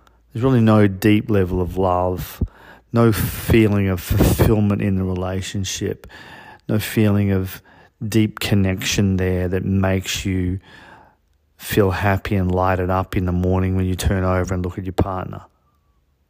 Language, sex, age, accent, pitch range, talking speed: English, male, 40-59, Australian, 90-105 Hz, 145 wpm